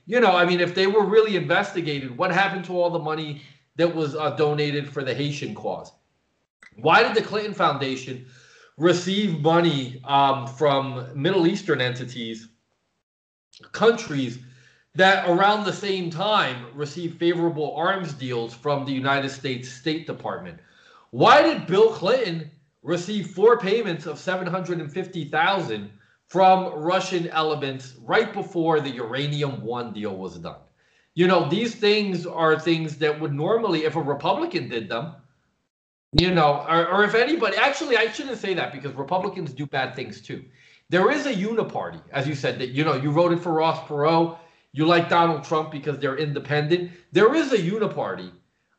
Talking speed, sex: 155 wpm, male